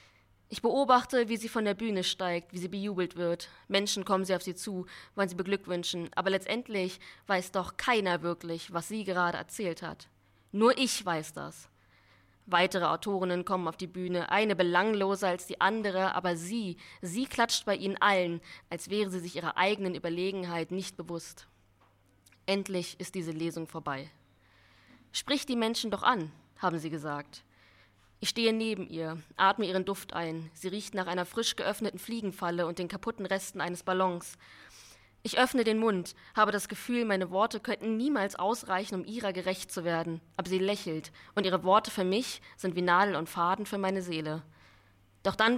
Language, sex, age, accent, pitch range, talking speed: German, female, 20-39, German, 165-205 Hz, 175 wpm